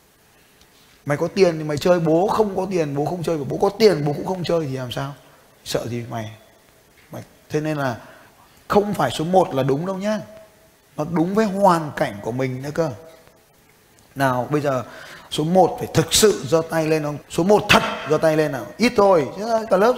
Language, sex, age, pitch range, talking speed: Vietnamese, male, 20-39, 140-185 Hz, 205 wpm